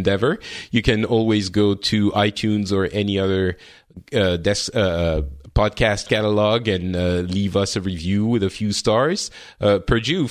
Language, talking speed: English, 155 wpm